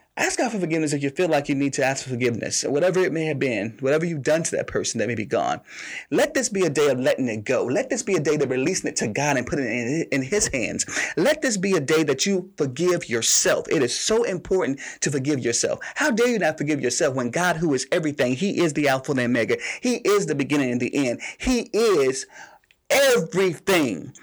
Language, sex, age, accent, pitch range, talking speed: English, male, 30-49, American, 135-200 Hz, 245 wpm